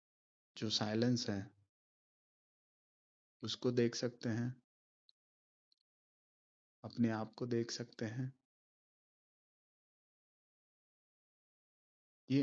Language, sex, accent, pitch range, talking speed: Hindi, male, native, 110-135 Hz, 70 wpm